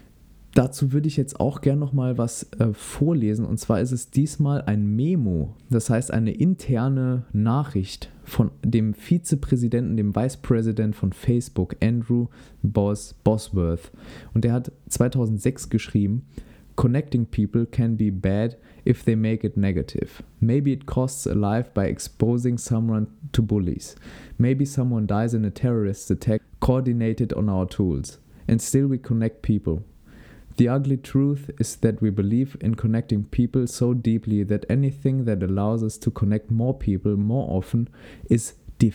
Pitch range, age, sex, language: 105-130 Hz, 20-39, male, German